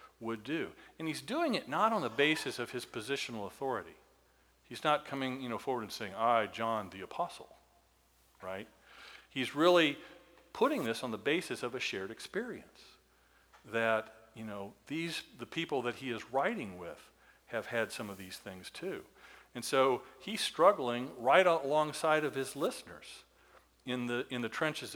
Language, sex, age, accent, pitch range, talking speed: English, male, 50-69, American, 110-155 Hz, 170 wpm